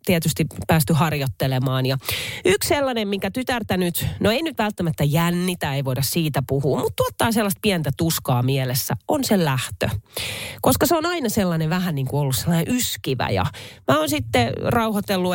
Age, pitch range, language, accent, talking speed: 30-49, 135-205 Hz, Finnish, native, 170 wpm